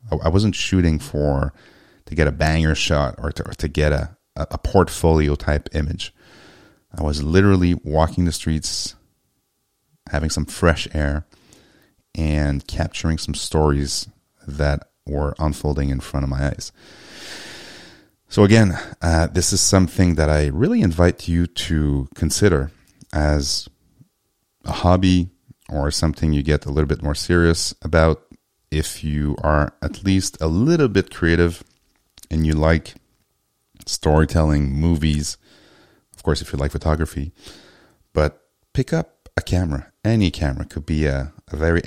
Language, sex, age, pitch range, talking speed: English, male, 30-49, 75-90 Hz, 140 wpm